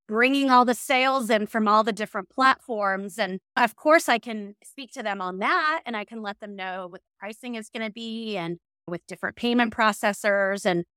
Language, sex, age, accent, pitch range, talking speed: English, female, 30-49, American, 195-240 Hz, 215 wpm